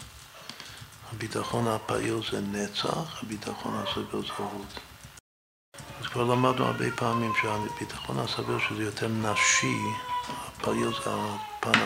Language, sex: Hebrew, male